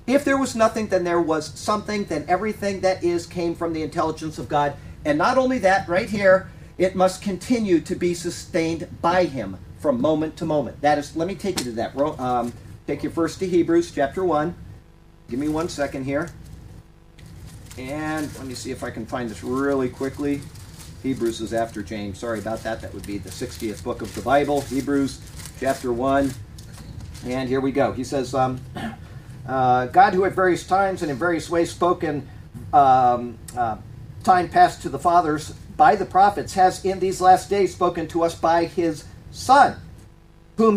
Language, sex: English, male